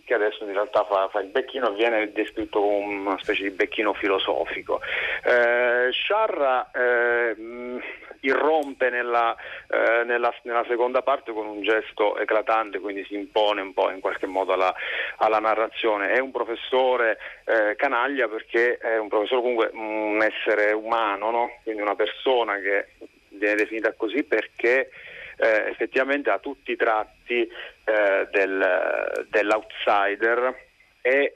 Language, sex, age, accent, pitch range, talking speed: Italian, male, 40-59, native, 105-125 Hz, 135 wpm